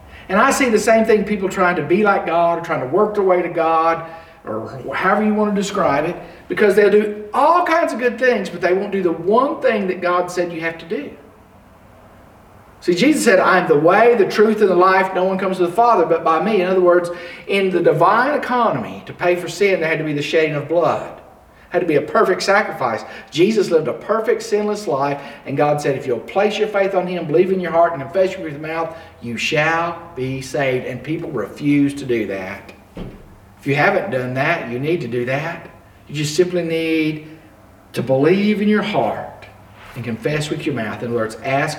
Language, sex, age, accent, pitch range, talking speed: English, male, 50-69, American, 120-190 Hz, 225 wpm